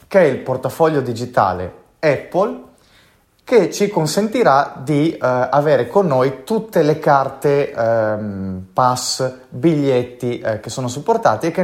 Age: 30-49